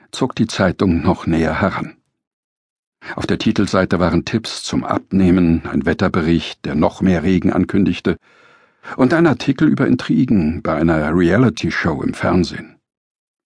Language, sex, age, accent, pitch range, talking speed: German, male, 60-79, German, 90-115 Hz, 135 wpm